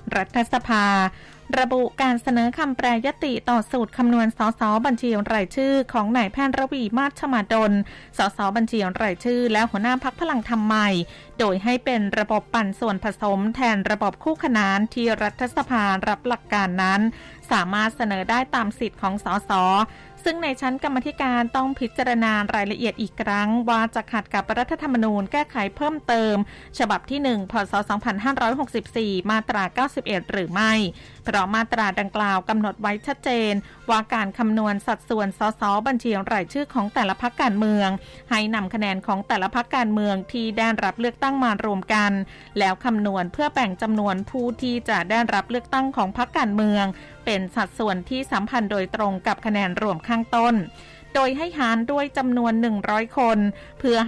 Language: Thai